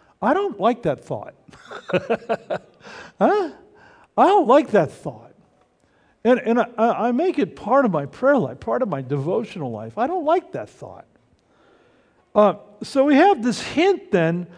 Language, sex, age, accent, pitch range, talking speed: English, male, 50-69, American, 175-255 Hz, 160 wpm